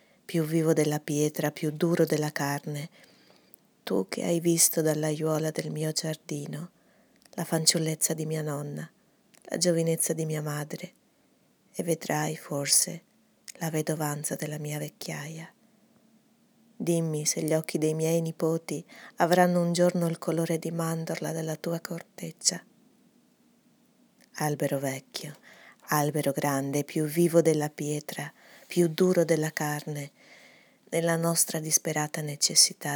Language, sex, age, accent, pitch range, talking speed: Italian, female, 30-49, native, 150-170 Hz, 120 wpm